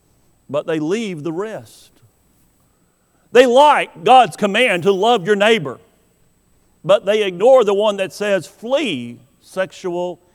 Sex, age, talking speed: male, 50-69, 130 wpm